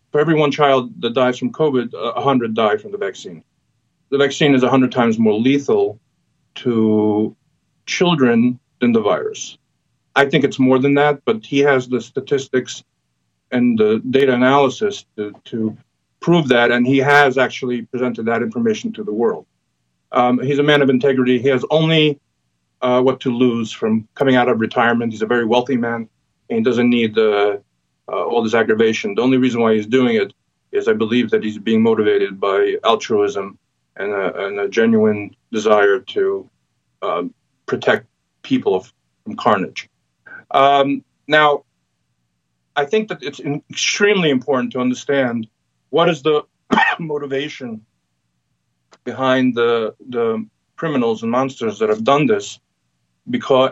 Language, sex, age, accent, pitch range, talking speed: English, male, 50-69, American, 115-150 Hz, 160 wpm